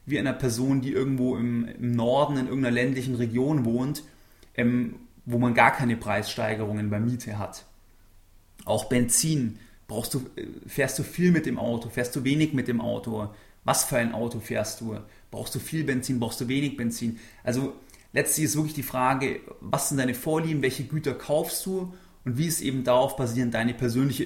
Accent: German